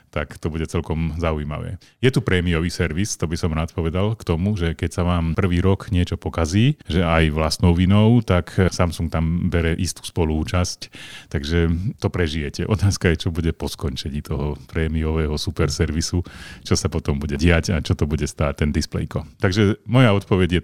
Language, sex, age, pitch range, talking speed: Slovak, male, 40-59, 80-100 Hz, 180 wpm